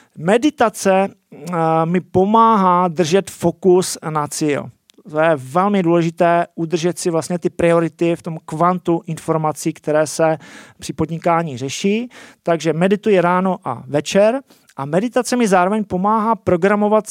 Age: 40-59